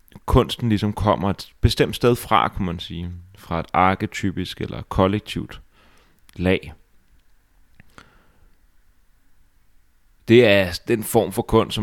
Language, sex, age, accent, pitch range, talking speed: Danish, male, 30-49, native, 85-110 Hz, 115 wpm